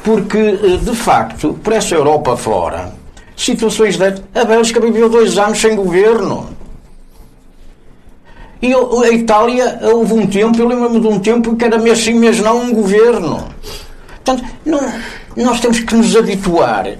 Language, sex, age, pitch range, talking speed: Portuguese, male, 60-79, 140-210 Hz, 140 wpm